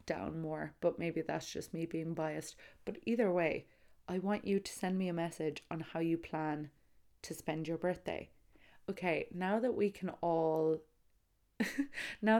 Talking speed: 170 wpm